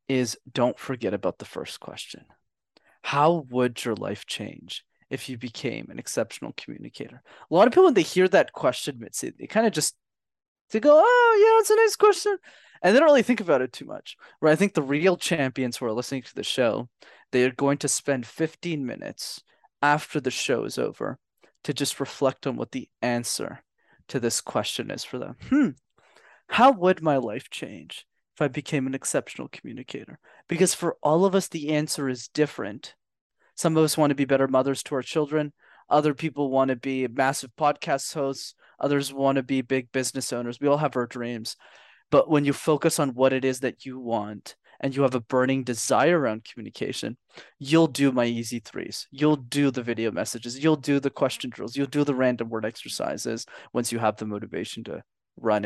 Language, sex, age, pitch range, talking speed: English, male, 20-39, 125-155 Hz, 195 wpm